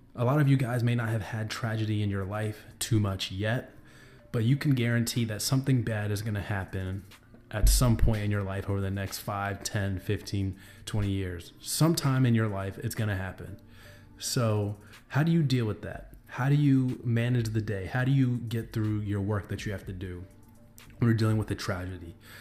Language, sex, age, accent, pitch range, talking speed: English, male, 20-39, American, 100-120 Hz, 205 wpm